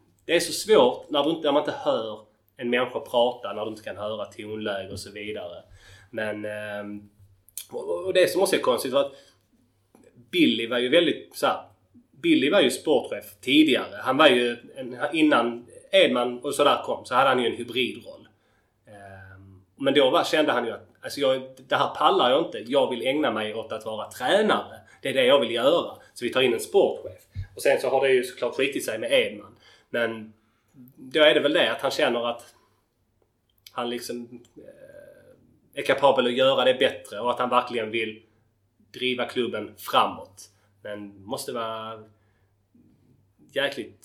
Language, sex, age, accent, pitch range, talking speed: Swedish, male, 30-49, native, 105-130 Hz, 175 wpm